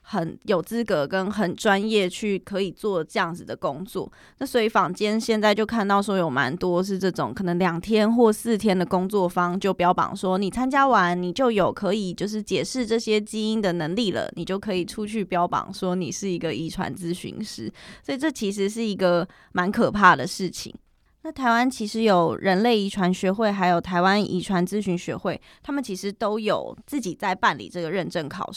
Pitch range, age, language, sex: 180-215 Hz, 20-39, Chinese, female